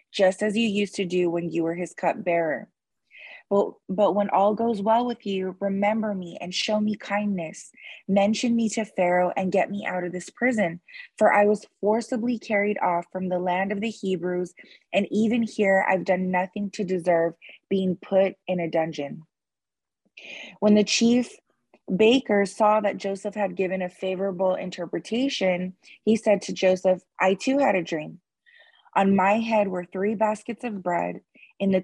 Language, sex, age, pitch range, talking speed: English, female, 20-39, 180-210 Hz, 175 wpm